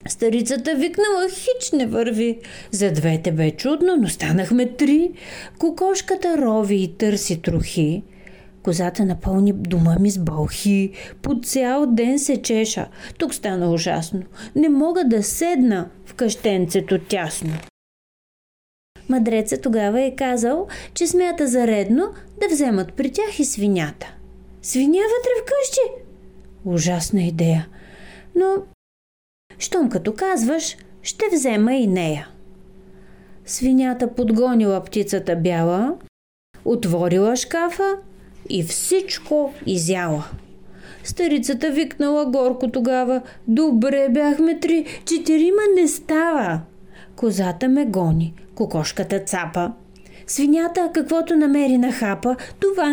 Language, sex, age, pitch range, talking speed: Bulgarian, female, 30-49, 190-315 Hz, 110 wpm